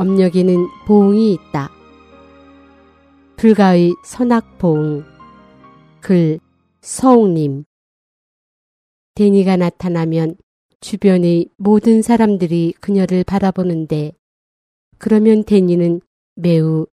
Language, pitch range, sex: Korean, 165-215 Hz, female